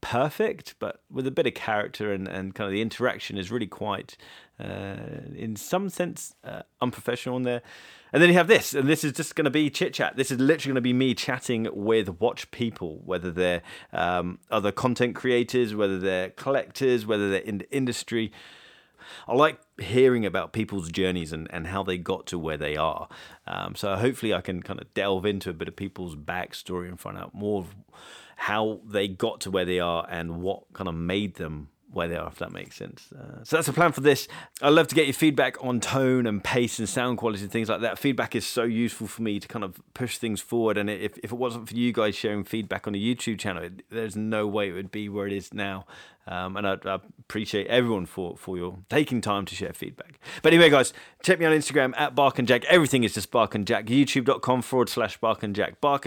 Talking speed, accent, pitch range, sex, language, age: 230 wpm, British, 100-130 Hz, male, English, 30-49